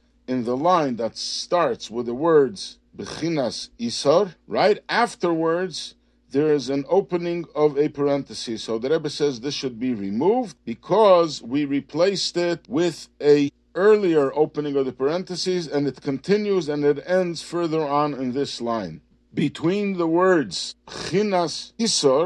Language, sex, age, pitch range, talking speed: English, male, 50-69, 135-185 Hz, 135 wpm